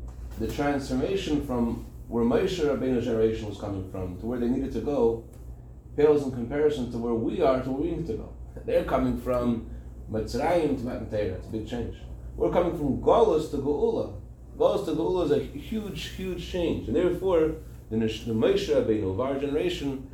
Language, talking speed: English, 185 wpm